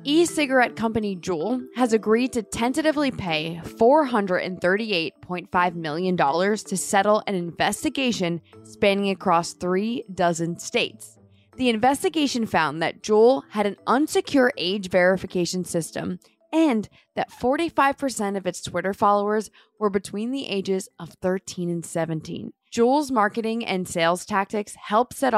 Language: English